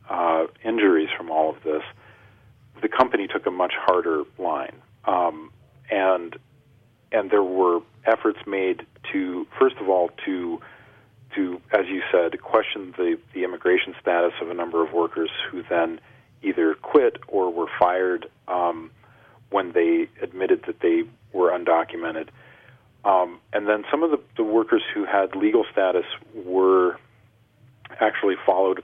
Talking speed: 145 wpm